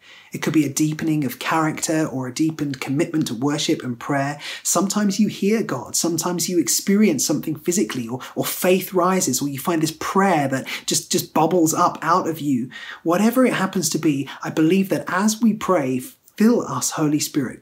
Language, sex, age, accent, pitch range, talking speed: English, male, 30-49, British, 135-180 Hz, 190 wpm